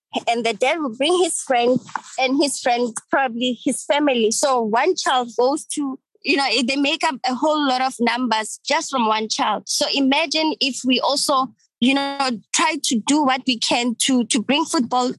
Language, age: English, 20-39